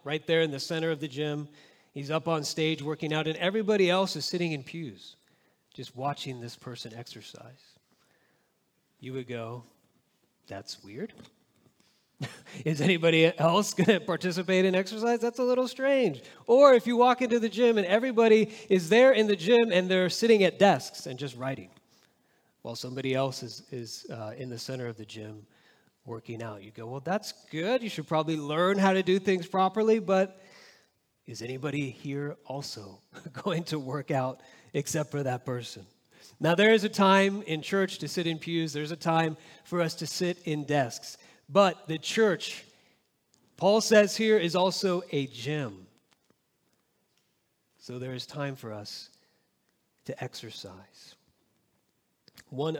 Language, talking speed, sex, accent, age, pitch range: English, 165 wpm, male, American, 30-49, 130-195 Hz